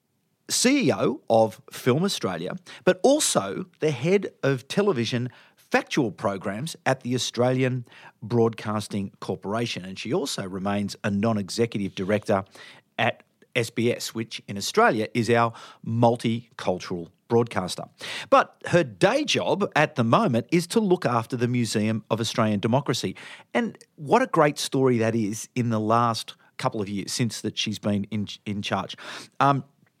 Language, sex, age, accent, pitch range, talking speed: English, male, 40-59, Australian, 110-155 Hz, 140 wpm